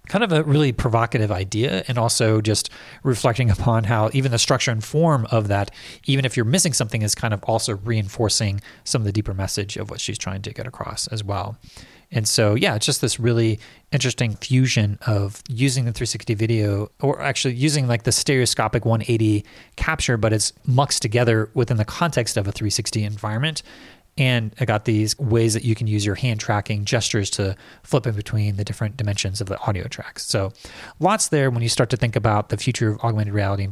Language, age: English, 30-49